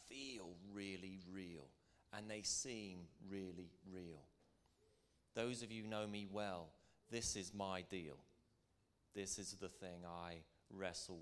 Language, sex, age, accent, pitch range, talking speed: English, male, 30-49, British, 90-105 Hz, 130 wpm